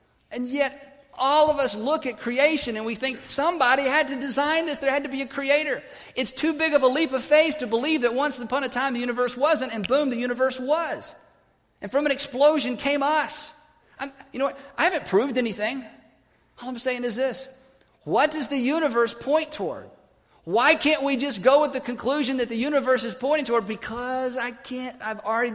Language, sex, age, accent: English, male, 50-69, American